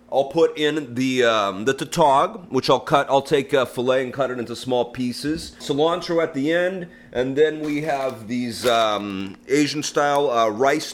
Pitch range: 115-145 Hz